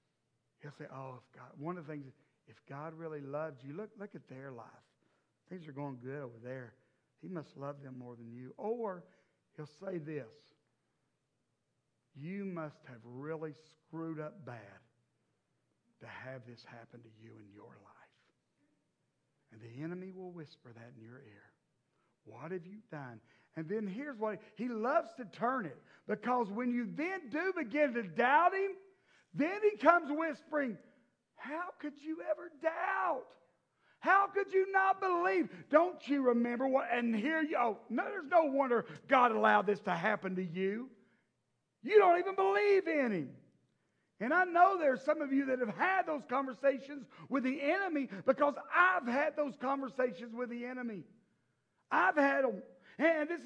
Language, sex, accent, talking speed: English, male, American, 170 wpm